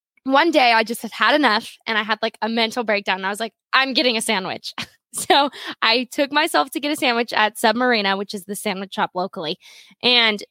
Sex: female